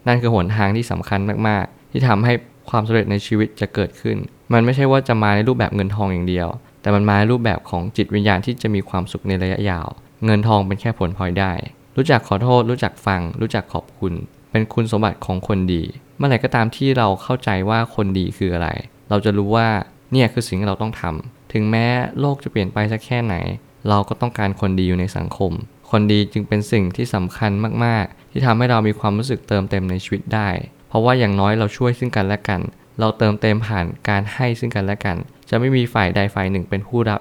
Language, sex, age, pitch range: Thai, male, 20-39, 100-120 Hz